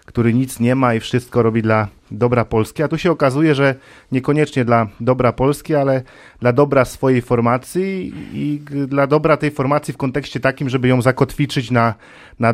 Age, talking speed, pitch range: 40-59, 175 wpm, 115-135 Hz